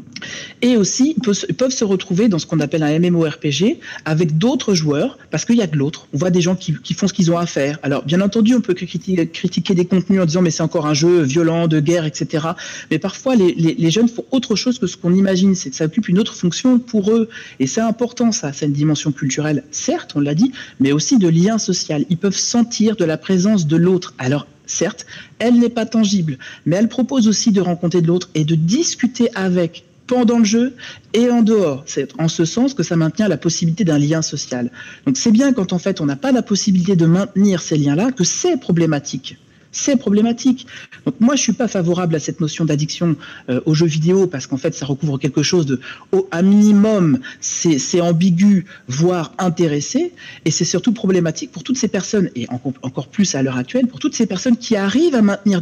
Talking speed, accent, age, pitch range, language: 220 wpm, French, 40-59, 160-225 Hz, French